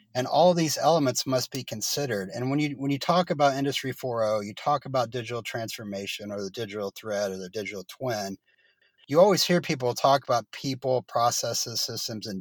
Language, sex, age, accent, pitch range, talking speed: English, male, 40-59, American, 115-145 Hz, 195 wpm